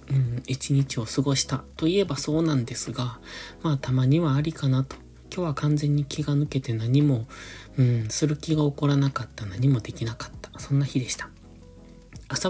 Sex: male